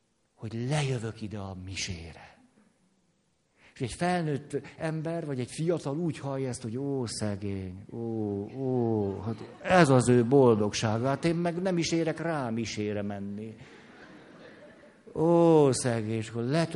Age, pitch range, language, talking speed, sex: 60-79, 110-150 Hz, Hungarian, 135 wpm, male